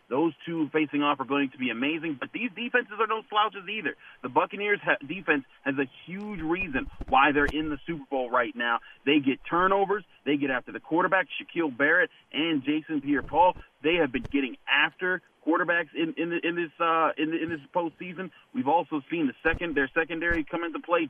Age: 30-49